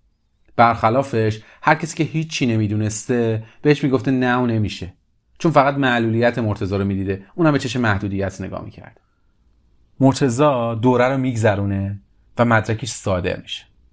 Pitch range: 105-130 Hz